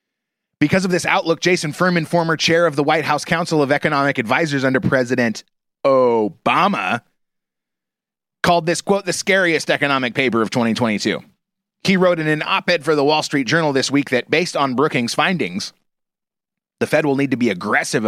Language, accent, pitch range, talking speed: English, American, 130-170 Hz, 175 wpm